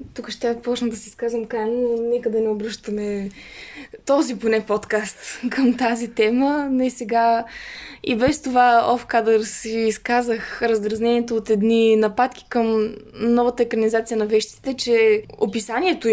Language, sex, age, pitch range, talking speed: Bulgarian, female, 20-39, 225-270 Hz, 135 wpm